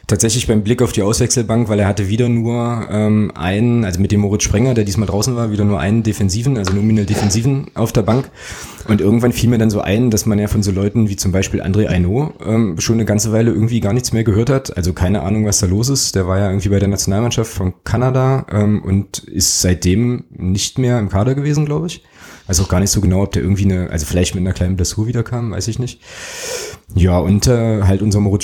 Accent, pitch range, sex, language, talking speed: German, 95-115 Hz, male, German, 240 wpm